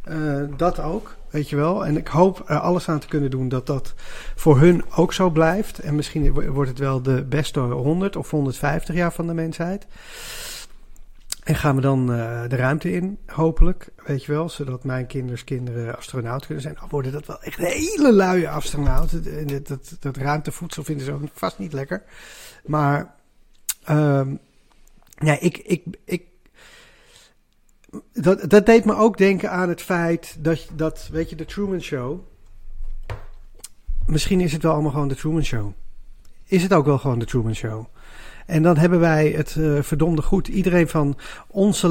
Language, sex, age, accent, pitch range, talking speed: Dutch, male, 40-59, Dutch, 135-175 Hz, 180 wpm